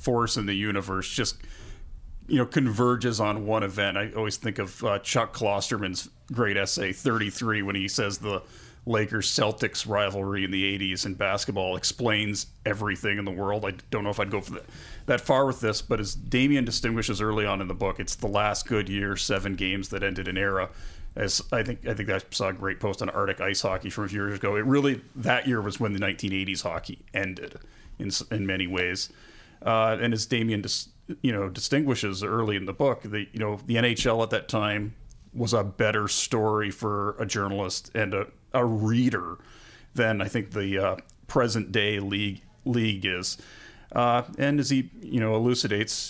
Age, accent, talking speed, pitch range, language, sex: 30-49, American, 200 wpm, 100-120 Hz, English, male